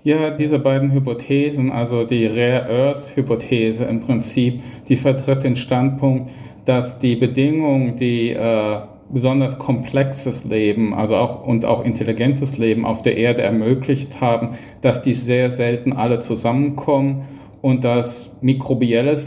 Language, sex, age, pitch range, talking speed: German, male, 50-69, 120-135 Hz, 130 wpm